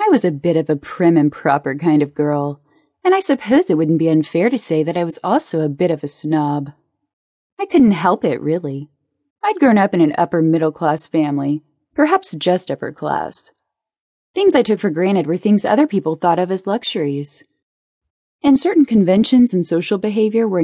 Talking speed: 190 wpm